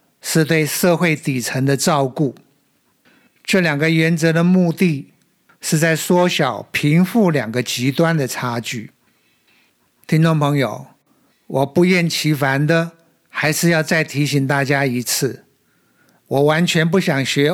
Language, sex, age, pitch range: Chinese, male, 50-69, 140-170 Hz